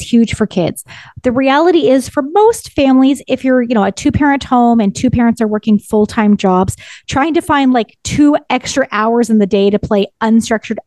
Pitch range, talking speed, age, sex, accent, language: 210-270 Hz, 210 wpm, 20-39, female, American, English